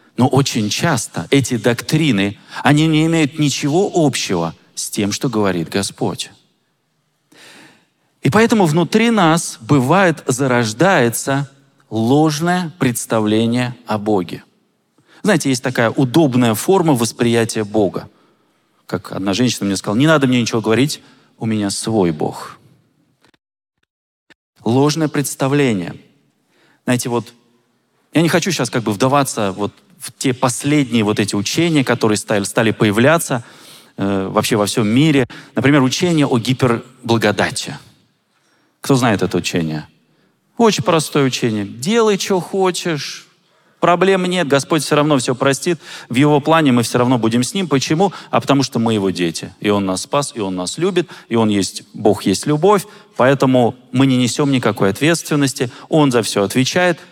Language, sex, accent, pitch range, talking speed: Russian, male, native, 115-155 Hz, 140 wpm